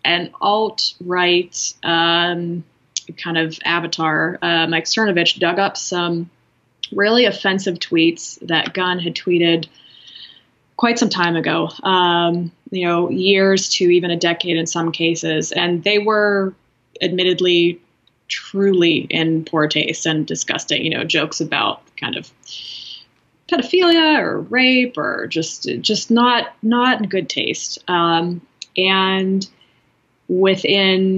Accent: American